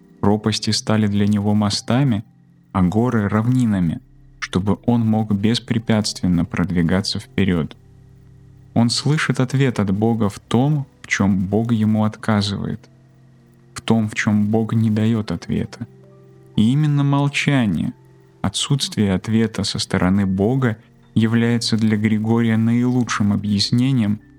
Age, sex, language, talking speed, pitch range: 20-39, male, Russian, 115 wpm, 105-125 Hz